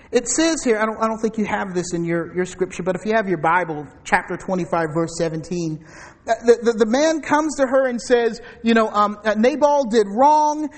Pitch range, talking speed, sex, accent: 230-330 Hz, 235 wpm, male, American